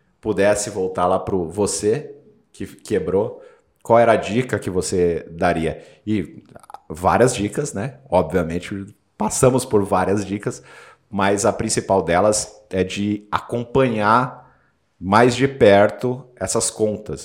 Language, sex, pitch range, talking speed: Portuguese, male, 95-120 Hz, 120 wpm